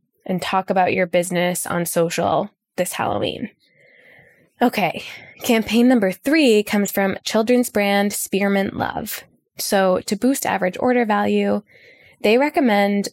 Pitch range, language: 180-240 Hz, English